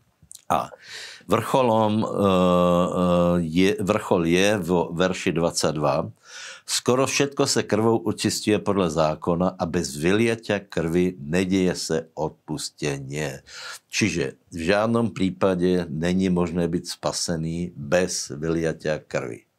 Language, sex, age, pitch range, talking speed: Slovak, male, 60-79, 85-100 Hz, 100 wpm